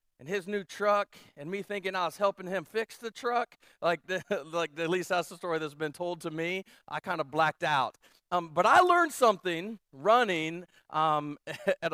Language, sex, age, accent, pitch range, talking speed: English, male, 40-59, American, 170-235 Hz, 205 wpm